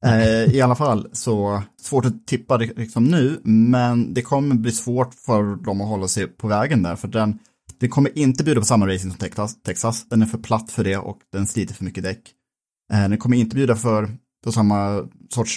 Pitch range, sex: 100-130 Hz, male